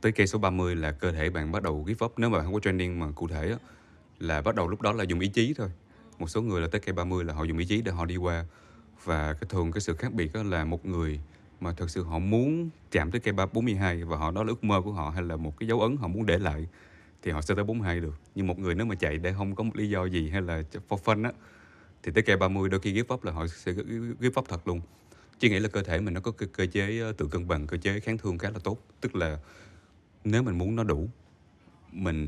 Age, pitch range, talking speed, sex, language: 20-39, 80-105 Hz, 285 wpm, male, Vietnamese